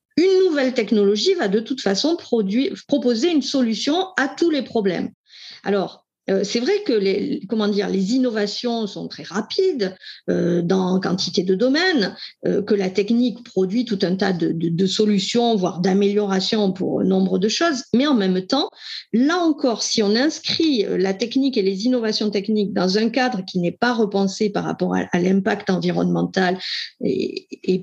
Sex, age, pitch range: female, 40-59, 190-245 Hz